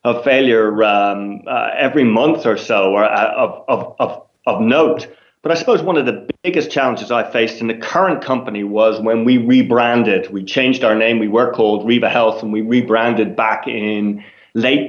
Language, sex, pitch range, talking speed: English, male, 110-130 Hz, 180 wpm